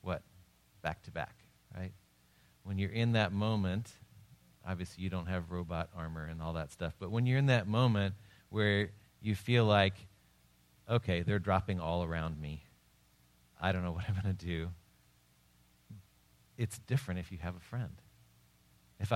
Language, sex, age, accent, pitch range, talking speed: English, male, 40-59, American, 85-110 Hz, 155 wpm